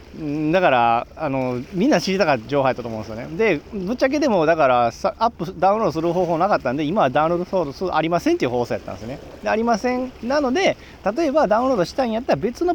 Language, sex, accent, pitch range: Japanese, male, native, 130-195 Hz